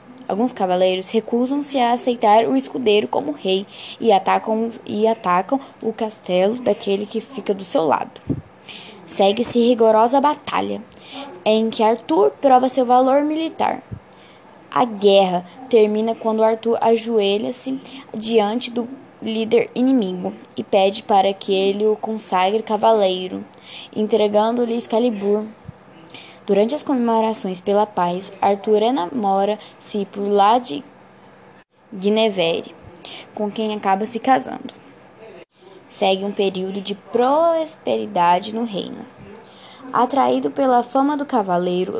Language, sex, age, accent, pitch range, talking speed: Portuguese, female, 10-29, Brazilian, 200-245 Hz, 110 wpm